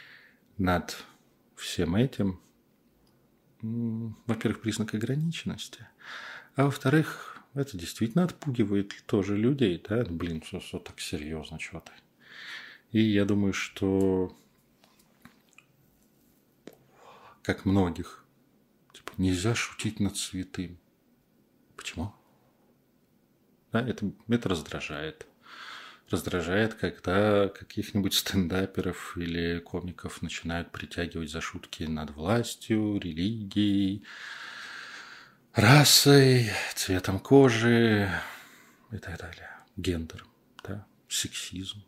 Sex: male